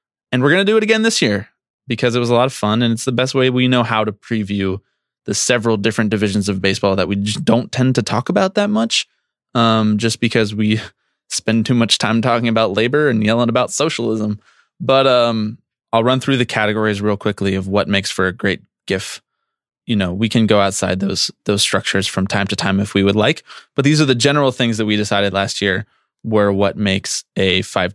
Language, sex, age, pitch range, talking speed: English, male, 20-39, 100-125 Hz, 225 wpm